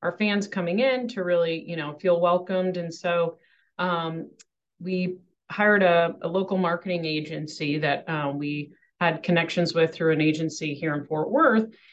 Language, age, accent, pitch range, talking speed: English, 40-59, American, 165-190 Hz, 165 wpm